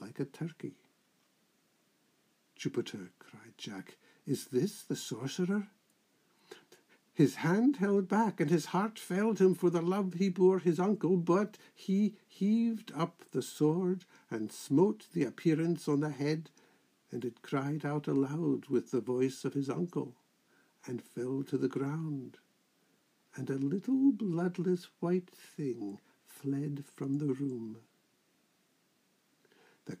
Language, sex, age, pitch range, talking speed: English, male, 60-79, 135-180 Hz, 130 wpm